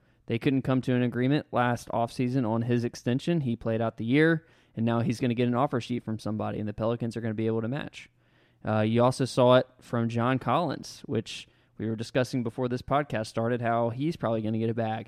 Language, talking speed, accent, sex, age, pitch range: English, 245 wpm, American, male, 20-39, 115-135 Hz